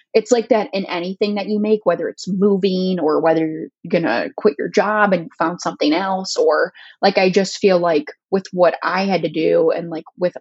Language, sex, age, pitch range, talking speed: English, female, 20-39, 170-210 Hz, 220 wpm